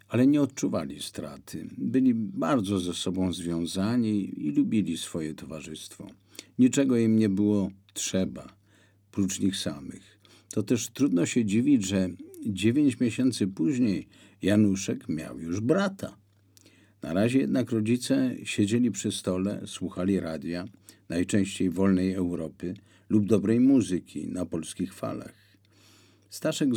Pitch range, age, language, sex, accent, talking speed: 95-125 Hz, 50-69, Polish, male, native, 120 wpm